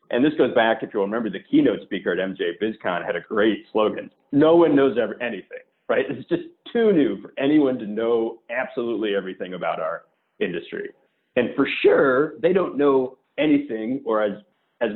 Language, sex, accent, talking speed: English, male, American, 185 wpm